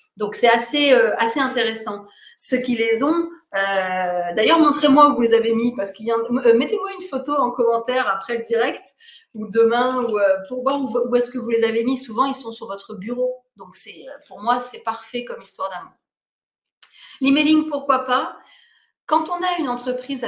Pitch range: 200-250 Hz